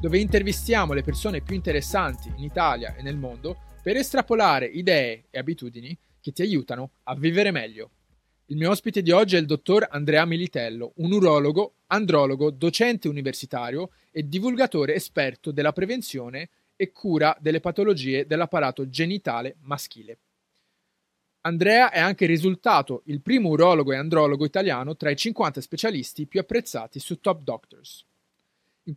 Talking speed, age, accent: 145 wpm, 30-49, native